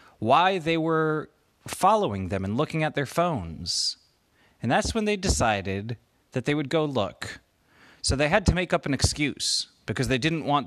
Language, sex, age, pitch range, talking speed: English, male, 30-49, 110-160 Hz, 180 wpm